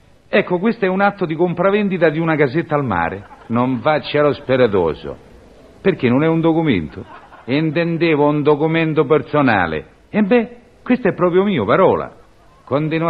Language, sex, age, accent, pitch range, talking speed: Italian, male, 50-69, native, 140-190 Hz, 150 wpm